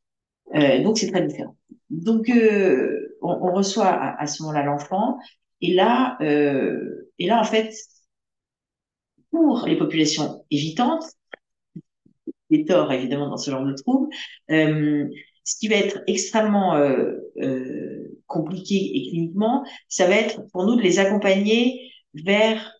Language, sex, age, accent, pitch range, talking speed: French, female, 50-69, French, 145-220 Hz, 140 wpm